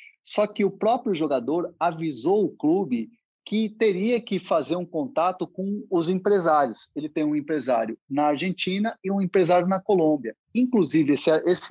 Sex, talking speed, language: male, 155 wpm, Portuguese